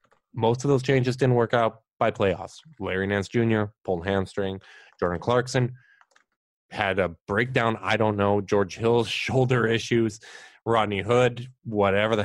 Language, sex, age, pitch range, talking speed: English, male, 20-39, 100-115 Hz, 145 wpm